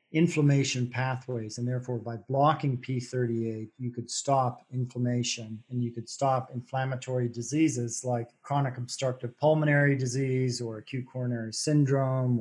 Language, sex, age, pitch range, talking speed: English, male, 40-59, 120-150 Hz, 125 wpm